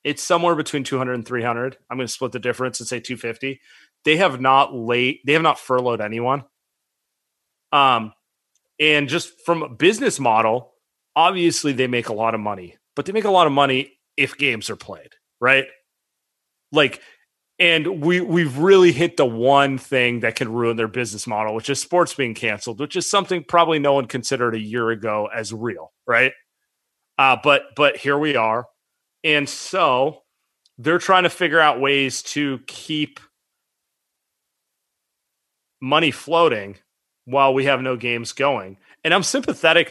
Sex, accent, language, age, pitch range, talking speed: male, American, English, 30-49, 120-150 Hz, 165 wpm